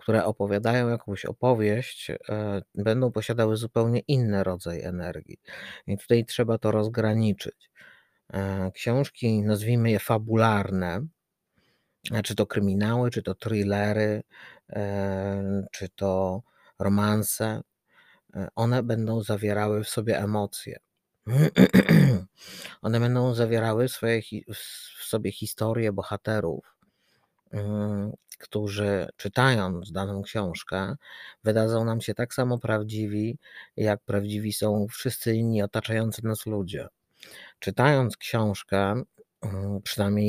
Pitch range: 100-115 Hz